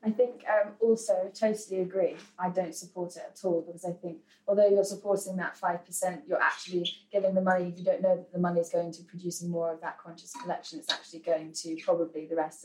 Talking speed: 230 wpm